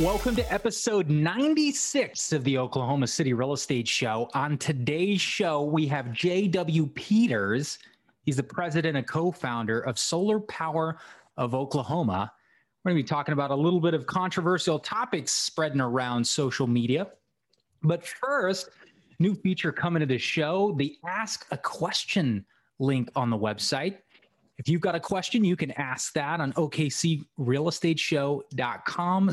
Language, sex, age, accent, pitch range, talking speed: English, male, 30-49, American, 135-185 Hz, 145 wpm